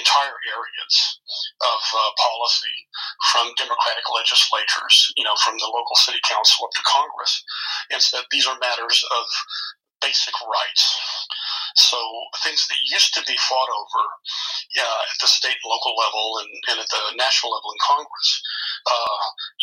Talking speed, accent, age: 155 wpm, American, 40-59